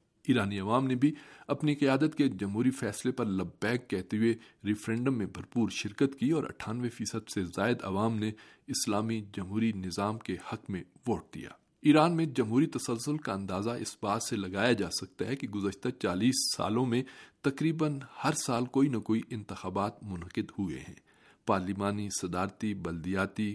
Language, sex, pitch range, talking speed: Urdu, male, 100-130 Hz, 165 wpm